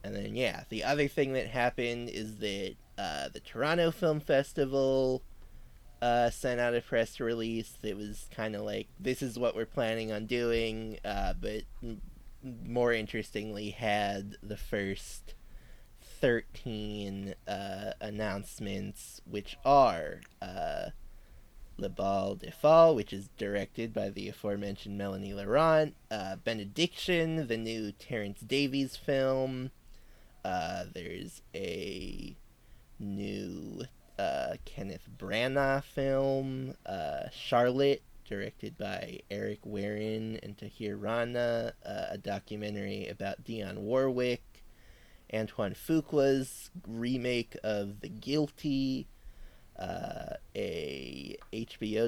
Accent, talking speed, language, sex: American, 110 wpm, English, male